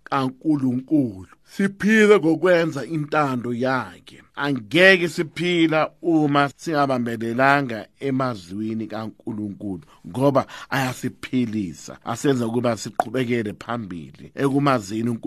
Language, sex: English, male